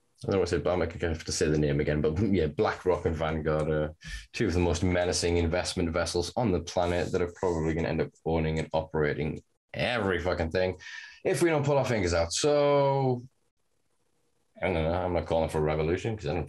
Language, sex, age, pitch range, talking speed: English, male, 10-29, 85-110 Hz, 210 wpm